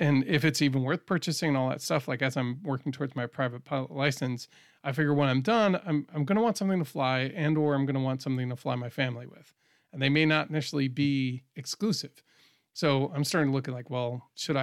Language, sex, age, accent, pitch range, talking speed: English, male, 40-59, American, 125-155 Hz, 245 wpm